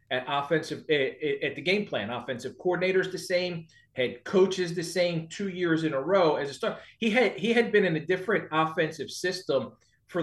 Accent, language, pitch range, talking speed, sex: American, English, 150-180 Hz, 195 wpm, male